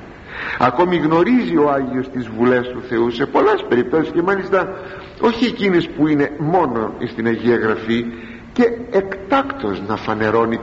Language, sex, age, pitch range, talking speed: Greek, male, 60-79, 120-200 Hz, 140 wpm